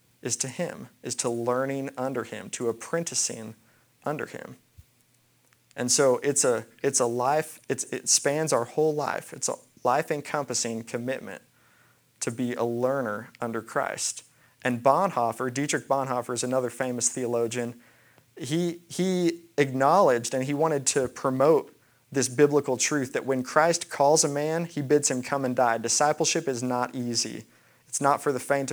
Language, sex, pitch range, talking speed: English, male, 120-145 Hz, 155 wpm